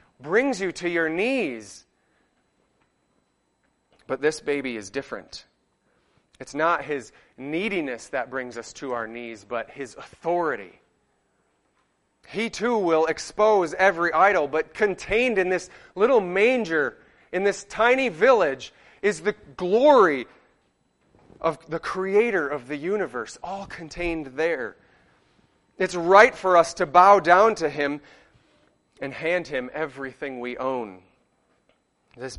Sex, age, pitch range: male, 30-49, 135-185 Hz